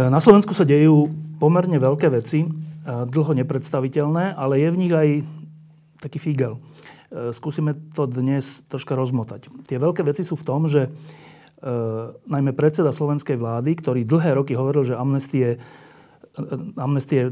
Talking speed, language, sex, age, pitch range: 135 wpm, Slovak, male, 40-59, 130-155 Hz